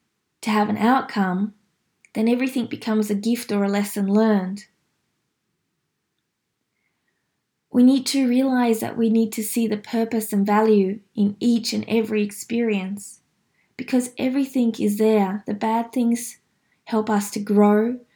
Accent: Australian